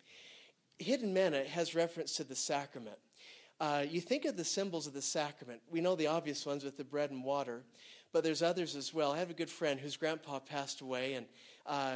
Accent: American